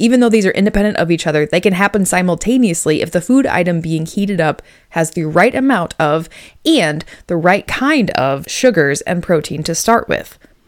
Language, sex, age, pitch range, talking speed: English, female, 20-39, 160-225 Hz, 195 wpm